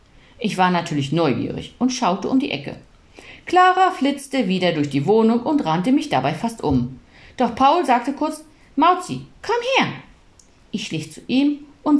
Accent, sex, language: German, female, German